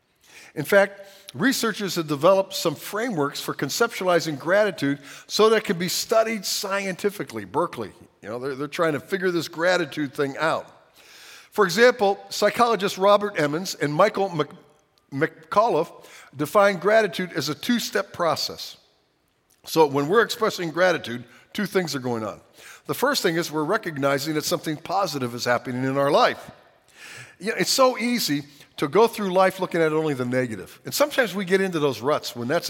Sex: male